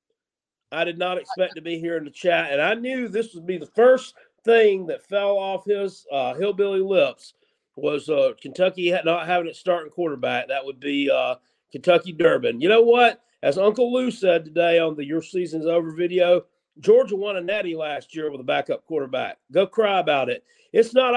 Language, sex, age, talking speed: English, male, 40-59, 200 wpm